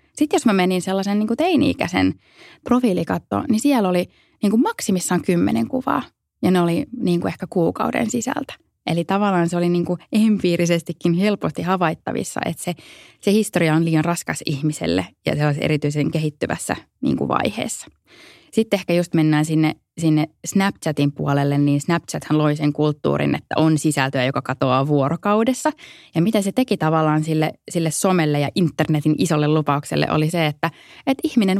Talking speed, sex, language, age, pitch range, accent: 160 wpm, female, Finnish, 20-39, 155-210 Hz, native